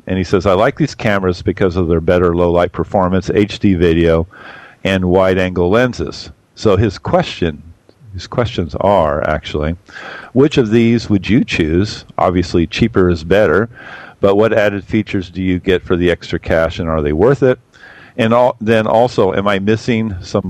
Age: 50-69